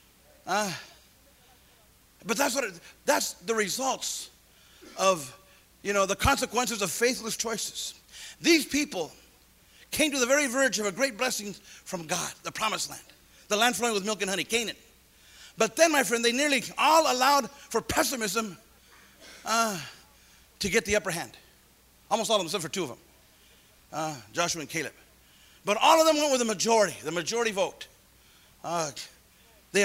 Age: 40-59